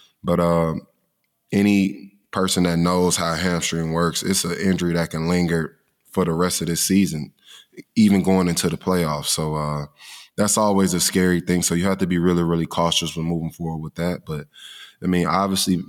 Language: English